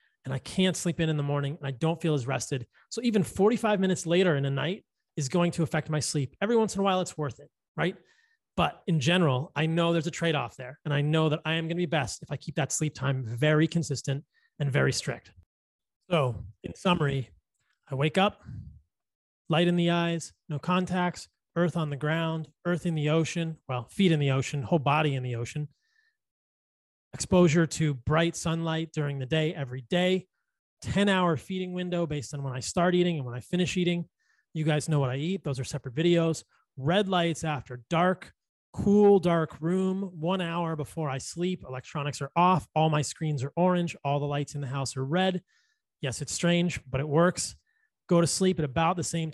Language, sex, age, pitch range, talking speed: English, male, 30-49, 145-180 Hz, 210 wpm